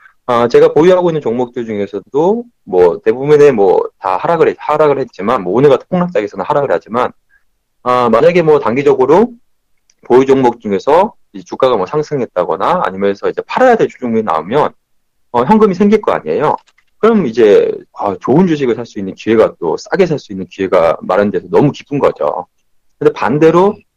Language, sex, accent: Korean, male, native